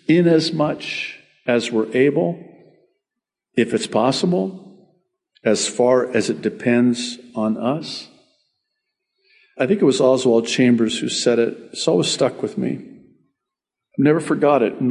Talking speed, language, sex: 145 wpm, English, male